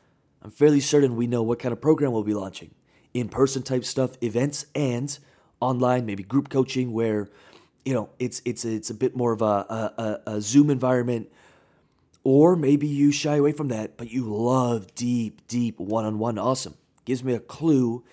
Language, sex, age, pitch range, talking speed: English, male, 30-49, 115-145 Hz, 180 wpm